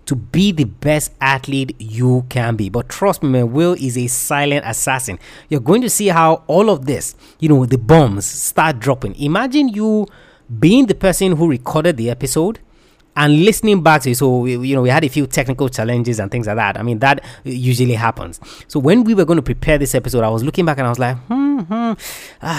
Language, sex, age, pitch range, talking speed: English, male, 30-49, 125-165 Hz, 220 wpm